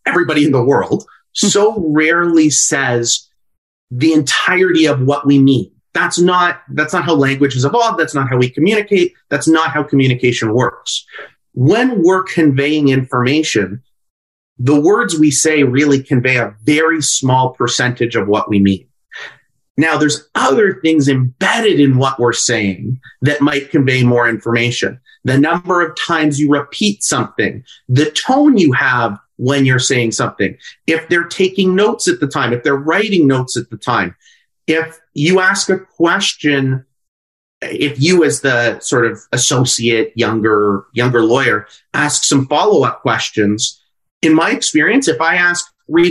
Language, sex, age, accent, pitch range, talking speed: English, male, 30-49, American, 125-170 Hz, 155 wpm